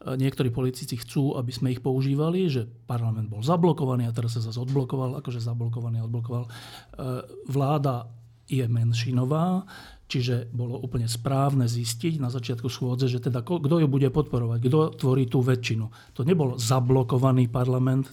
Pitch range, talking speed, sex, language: 125-150 Hz, 150 wpm, male, Slovak